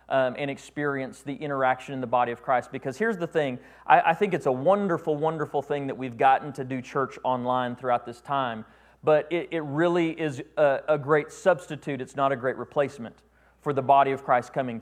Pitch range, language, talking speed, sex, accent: 135-165 Hz, English, 210 wpm, male, American